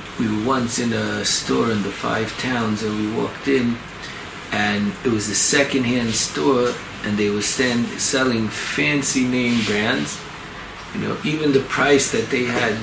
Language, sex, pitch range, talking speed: English, male, 105-125 Hz, 170 wpm